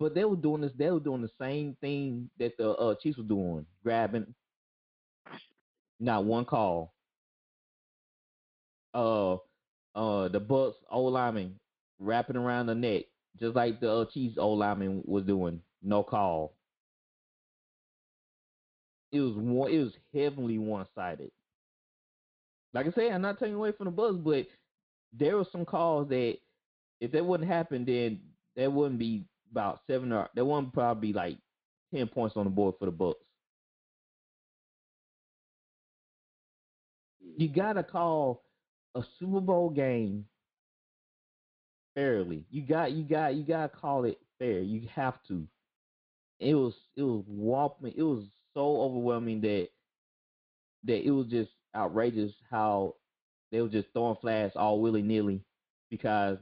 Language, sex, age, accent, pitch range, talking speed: English, male, 20-39, American, 105-145 Hz, 145 wpm